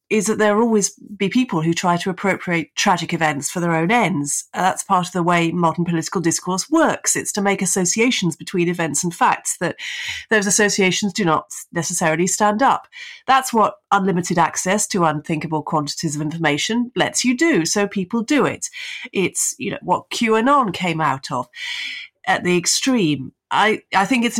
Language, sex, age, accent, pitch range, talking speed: English, female, 30-49, British, 160-205 Hz, 180 wpm